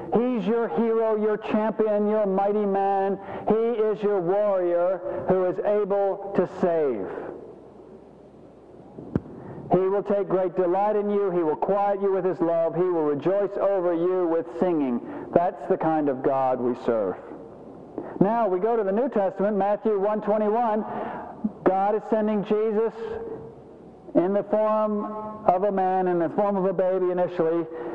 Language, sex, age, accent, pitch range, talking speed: English, male, 50-69, American, 185-230 Hz, 155 wpm